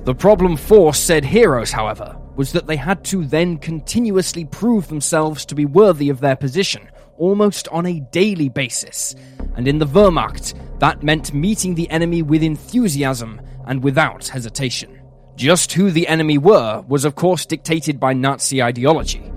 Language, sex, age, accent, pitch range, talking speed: English, male, 20-39, British, 130-175 Hz, 160 wpm